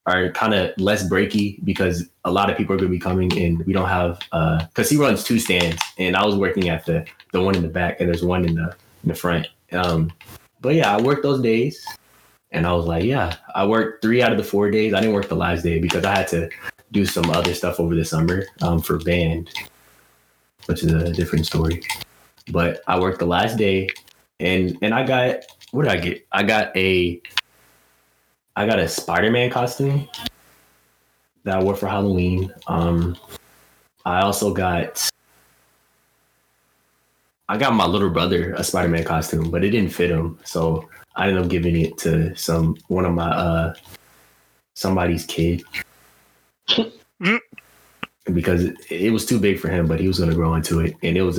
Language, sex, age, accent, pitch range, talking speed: English, male, 20-39, American, 80-95 Hz, 195 wpm